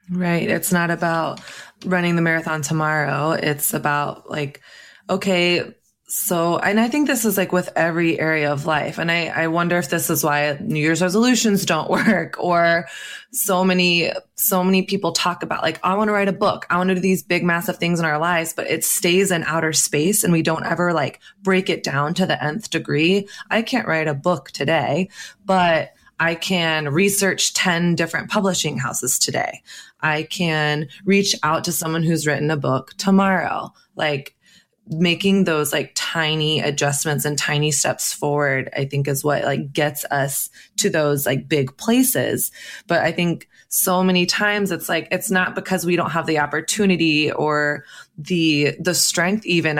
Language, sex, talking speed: English, female, 180 wpm